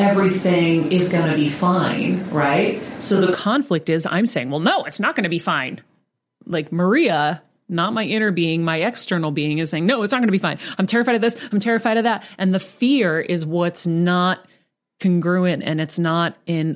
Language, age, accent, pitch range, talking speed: English, 30-49, American, 155-190 Hz, 210 wpm